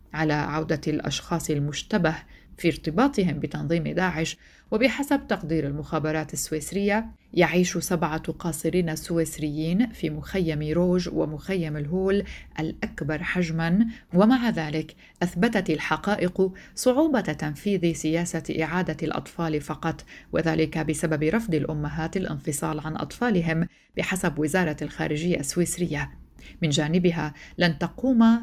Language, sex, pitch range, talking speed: Arabic, female, 155-190 Hz, 100 wpm